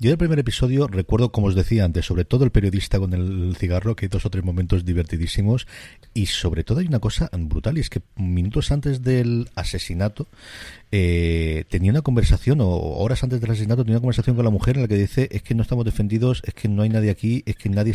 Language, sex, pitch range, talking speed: Spanish, male, 95-125 Hz, 235 wpm